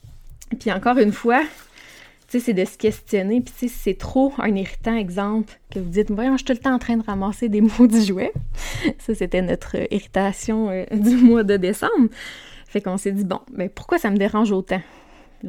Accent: Canadian